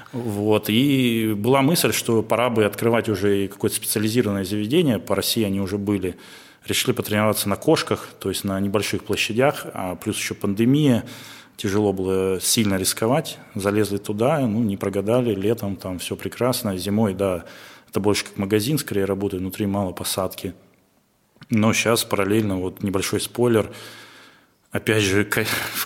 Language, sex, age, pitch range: Russian, male, 20-39, 100-115 Hz